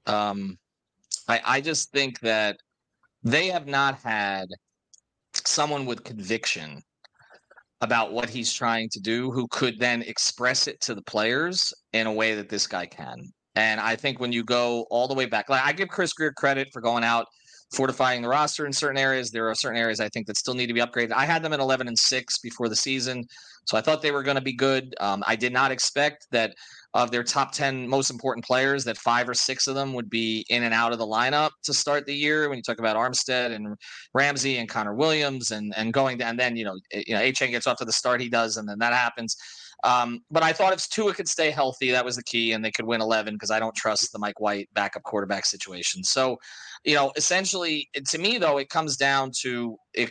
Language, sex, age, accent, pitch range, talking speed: English, male, 30-49, American, 115-140 Hz, 230 wpm